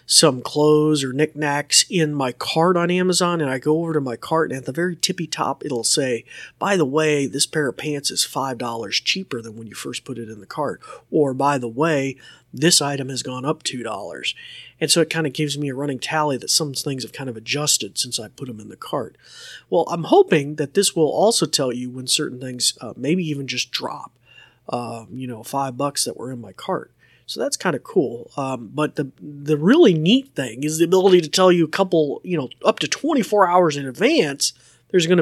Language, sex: English, male